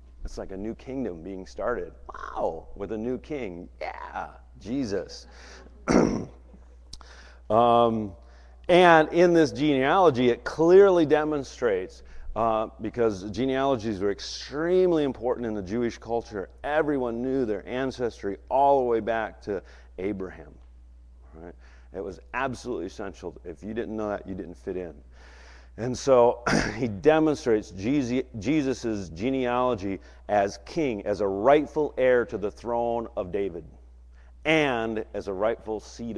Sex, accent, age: male, American, 40-59